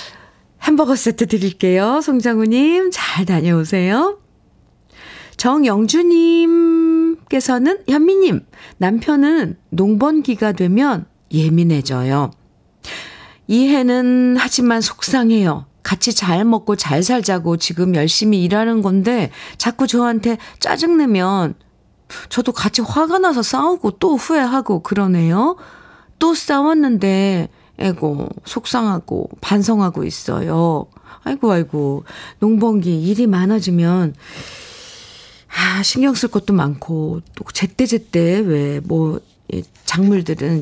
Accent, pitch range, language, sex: native, 170-255 Hz, Korean, female